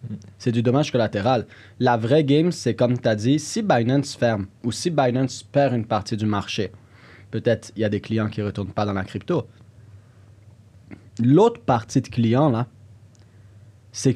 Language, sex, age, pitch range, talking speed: French, male, 30-49, 110-140 Hz, 180 wpm